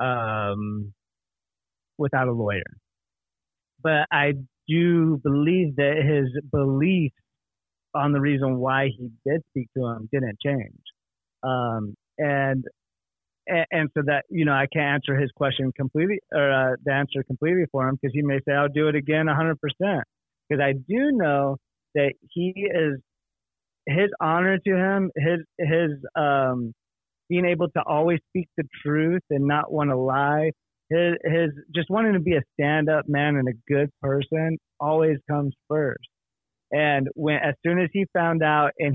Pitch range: 135-160 Hz